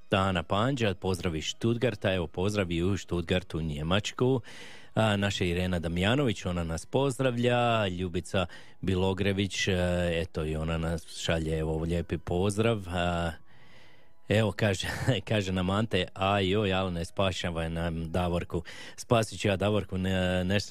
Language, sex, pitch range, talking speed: Croatian, male, 90-100 Hz, 120 wpm